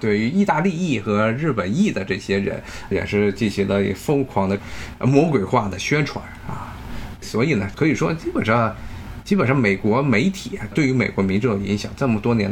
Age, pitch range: 20-39, 100-135 Hz